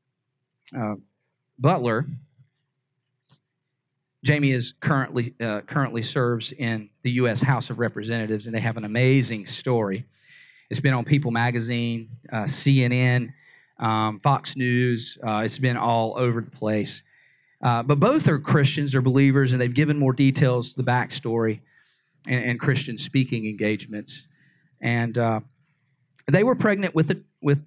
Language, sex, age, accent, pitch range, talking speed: English, male, 40-59, American, 115-140 Hz, 140 wpm